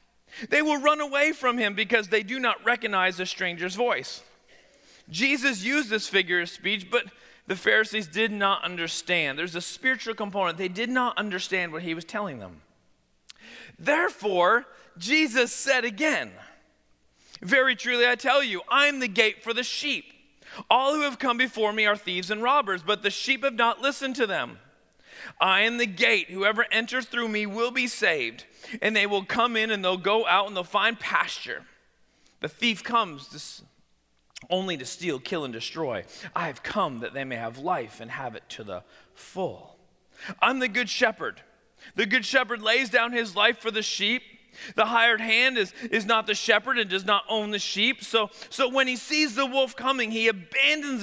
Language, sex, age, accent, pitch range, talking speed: English, male, 40-59, American, 195-255 Hz, 185 wpm